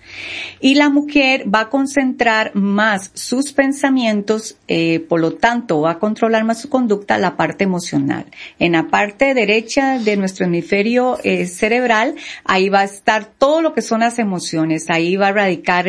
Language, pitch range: Spanish, 190-245 Hz